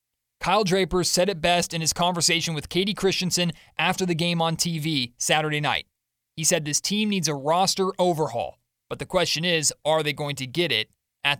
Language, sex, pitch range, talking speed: English, male, 150-185 Hz, 195 wpm